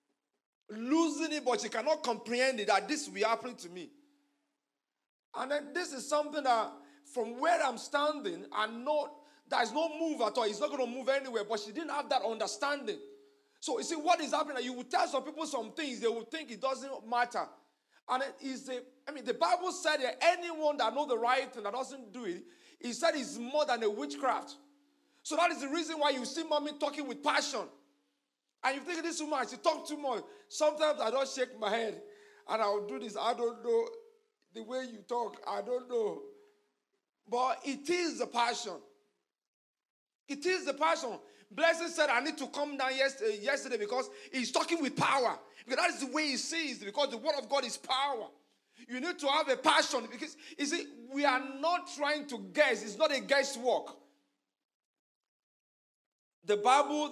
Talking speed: 200 wpm